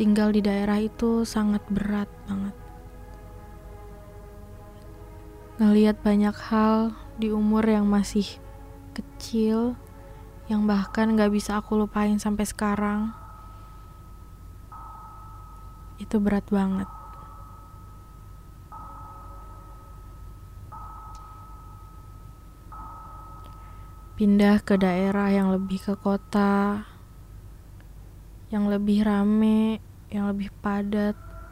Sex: female